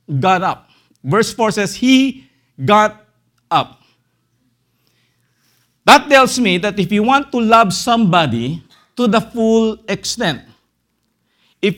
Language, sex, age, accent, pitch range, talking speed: English, male, 50-69, Filipino, 135-205 Hz, 115 wpm